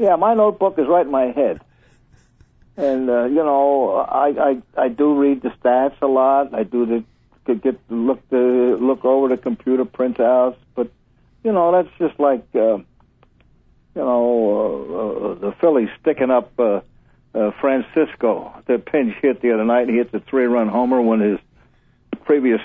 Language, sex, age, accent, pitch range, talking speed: English, male, 60-79, American, 115-135 Hz, 175 wpm